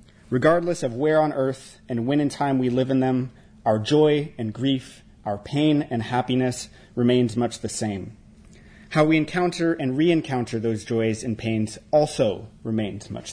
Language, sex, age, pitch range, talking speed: English, male, 30-49, 110-150 Hz, 165 wpm